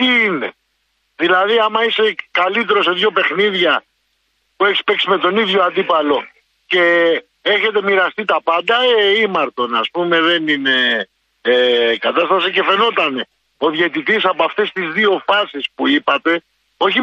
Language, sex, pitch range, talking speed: Greek, male, 170-230 Hz, 130 wpm